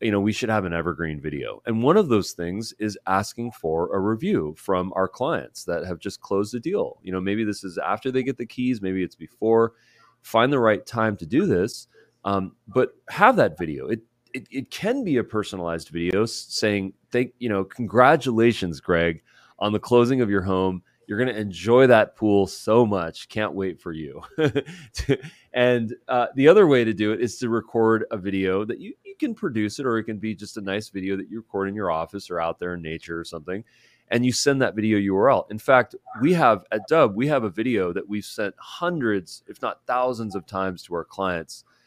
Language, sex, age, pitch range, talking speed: English, male, 30-49, 95-120 Hz, 215 wpm